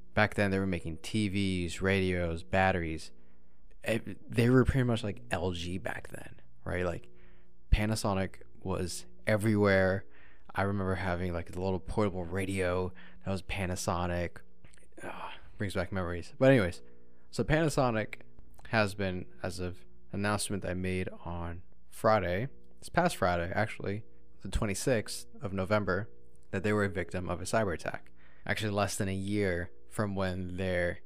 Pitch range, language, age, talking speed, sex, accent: 85-105 Hz, English, 20-39, 145 wpm, male, American